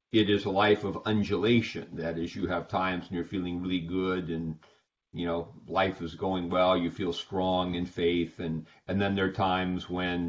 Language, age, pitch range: English, 50-69, 85-100 Hz